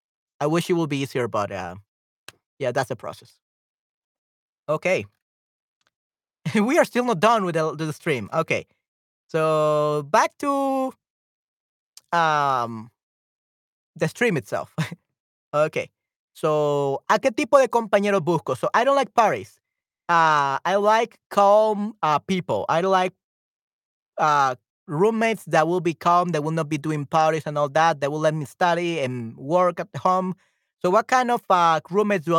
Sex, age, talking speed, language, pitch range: male, 30-49, 150 wpm, Spanish, 155-195 Hz